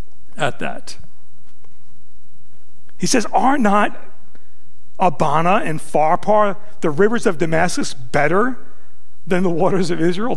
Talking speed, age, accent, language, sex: 110 wpm, 40-59, American, English, male